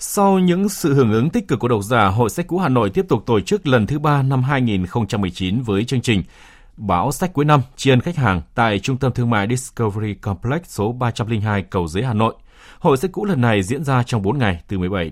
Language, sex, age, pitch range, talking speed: Vietnamese, male, 20-39, 100-140 Hz, 235 wpm